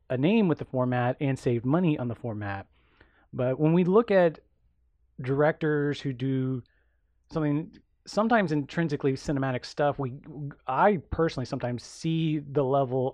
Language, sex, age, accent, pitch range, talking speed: English, male, 30-49, American, 115-140 Hz, 140 wpm